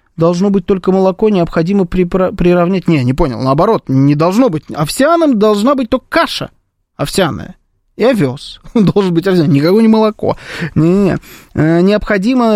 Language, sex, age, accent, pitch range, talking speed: Russian, male, 20-39, native, 170-225 Hz, 150 wpm